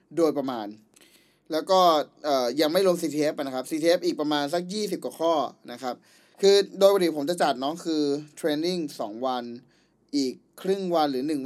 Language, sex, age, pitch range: Thai, male, 20-39, 135-175 Hz